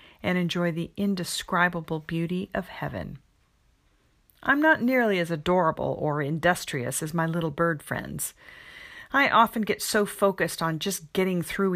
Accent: American